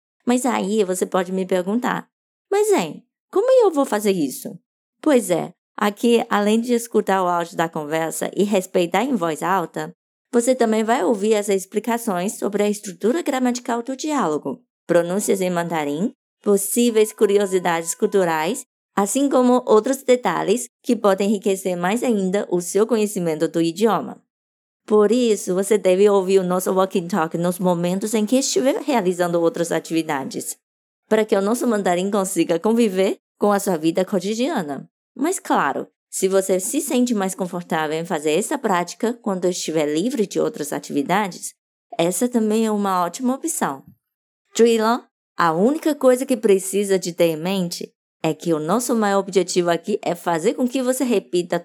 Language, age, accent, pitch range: Chinese, 20-39, Brazilian, 180-235 Hz